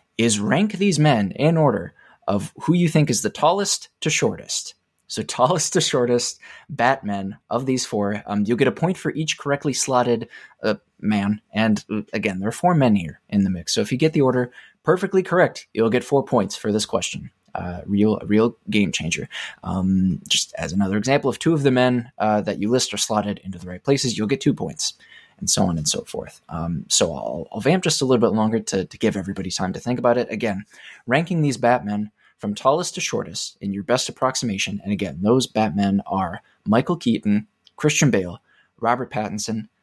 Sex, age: male, 20-39